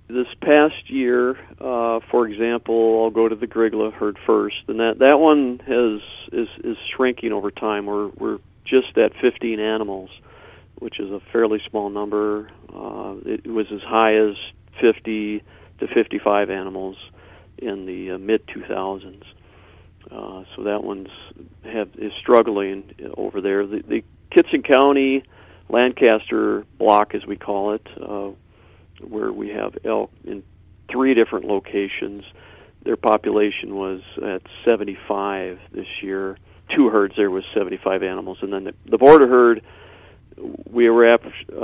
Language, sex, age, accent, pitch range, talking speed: English, male, 50-69, American, 95-115 Hz, 145 wpm